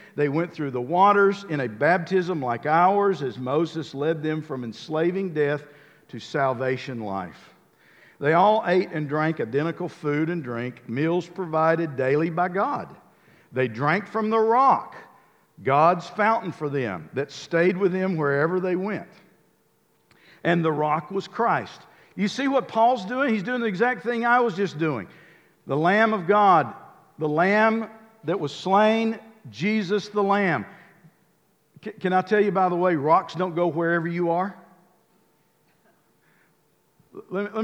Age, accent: 50-69, American